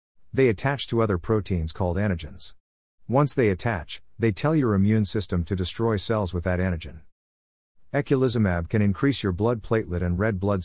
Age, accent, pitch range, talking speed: 50-69, American, 90-115 Hz, 170 wpm